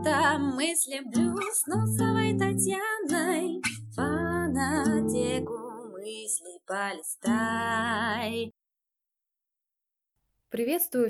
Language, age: Russian, 20-39